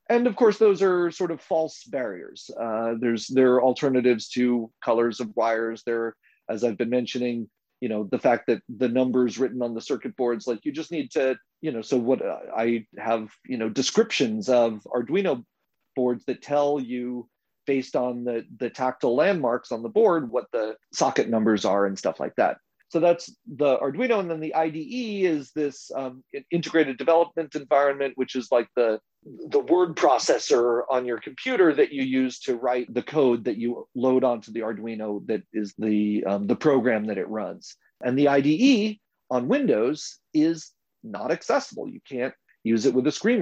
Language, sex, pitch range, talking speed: English, male, 120-160 Hz, 185 wpm